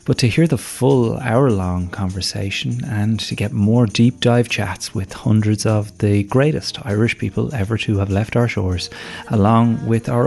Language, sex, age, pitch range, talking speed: English, male, 30-49, 100-120 Hz, 170 wpm